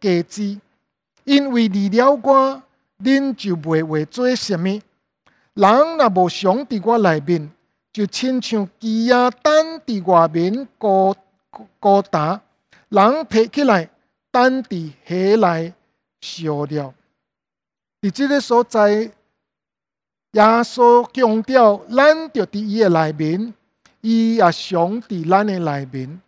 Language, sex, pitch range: English, male, 185-250 Hz